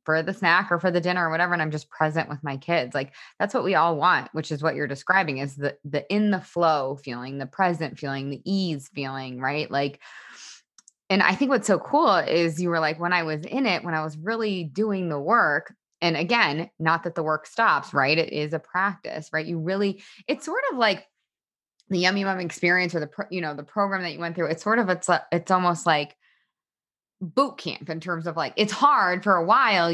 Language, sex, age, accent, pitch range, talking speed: English, female, 20-39, American, 150-185 Hz, 230 wpm